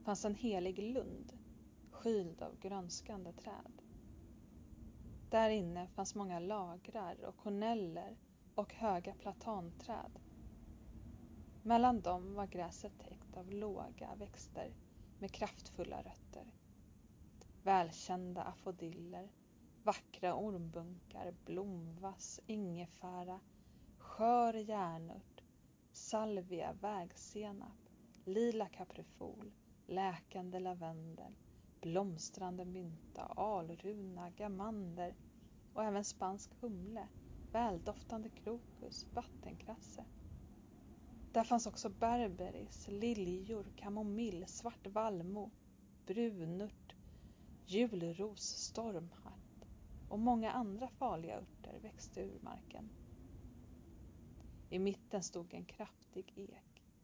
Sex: female